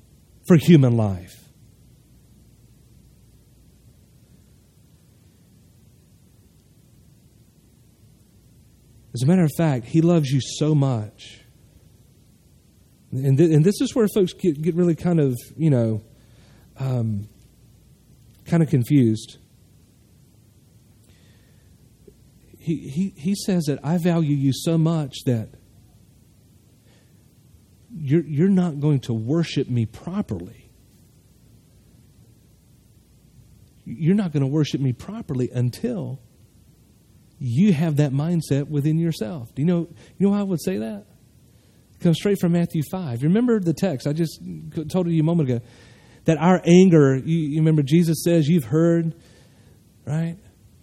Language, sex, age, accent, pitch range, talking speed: English, male, 40-59, American, 120-170 Hz, 120 wpm